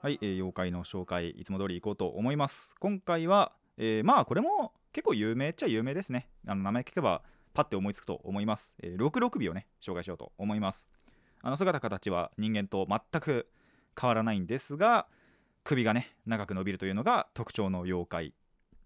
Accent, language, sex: native, Japanese, male